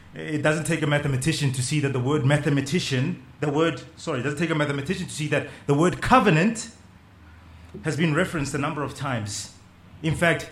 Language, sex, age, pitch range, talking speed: English, male, 30-49, 100-155 Hz, 195 wpm